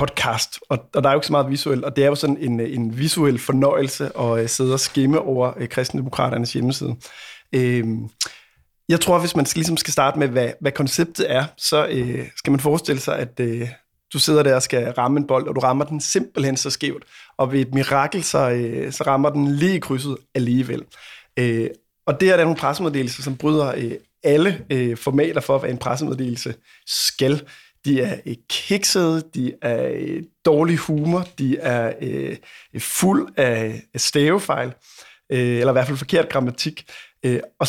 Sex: male